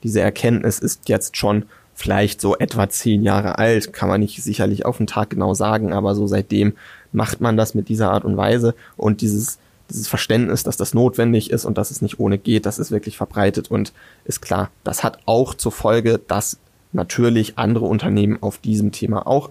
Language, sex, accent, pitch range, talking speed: German, male, German, 105-120 Hz, 200 wpm